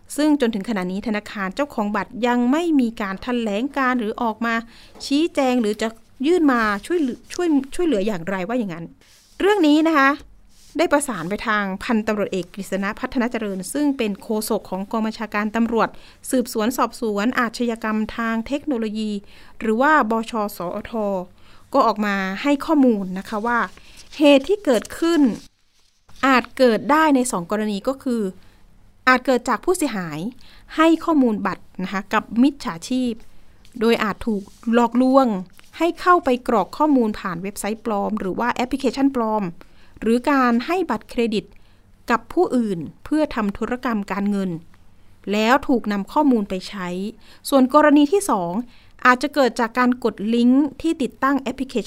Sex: female